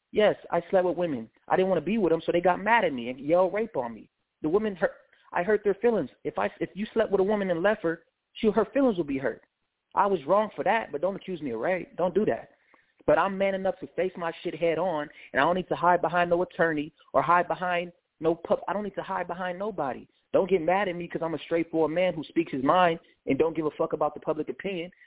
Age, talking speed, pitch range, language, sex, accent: 20-39, 275 wpm, 160-200 Hz, English, male, American